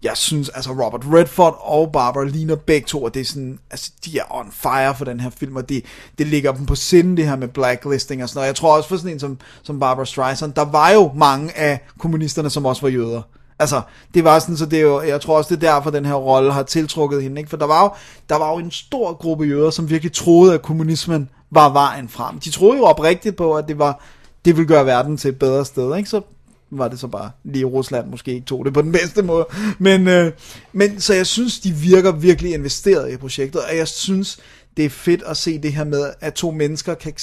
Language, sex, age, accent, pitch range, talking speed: Danish, male, 30-49, native, 135-170 Hz, 250 wpm